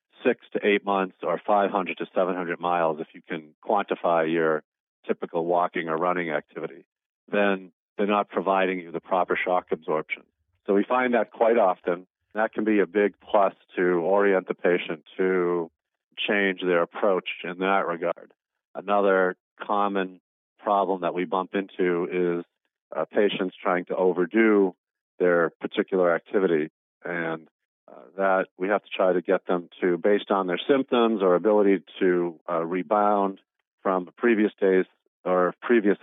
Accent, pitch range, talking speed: American, 85-100 Hz, 150 wpm